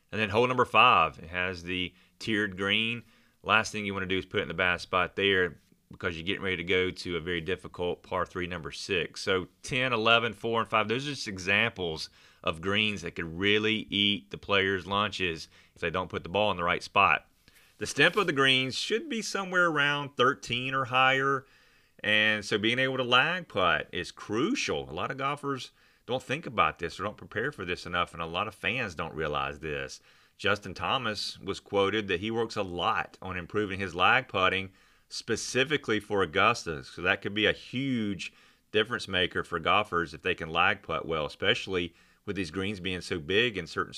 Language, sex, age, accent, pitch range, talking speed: English, male, 30-49, American, 90-115 Hz, 205 wpm